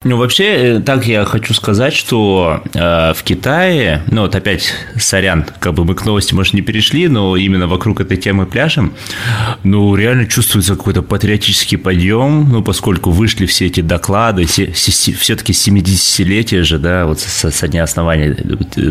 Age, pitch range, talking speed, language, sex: 20-39, 85-105 Hz, 160 wpm, Russian, male